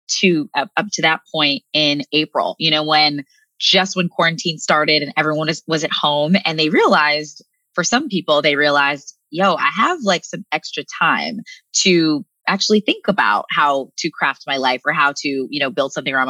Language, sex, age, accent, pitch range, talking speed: English, female, 20-39, American, 150-195 Hz, 190 wpm